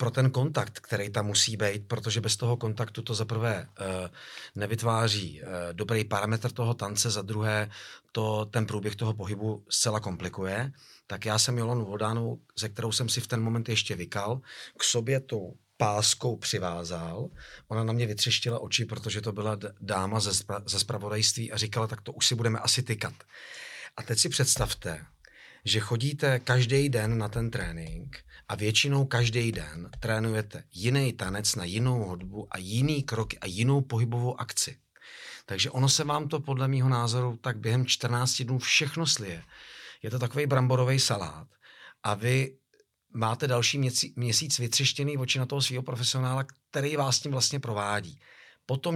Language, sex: Czech, male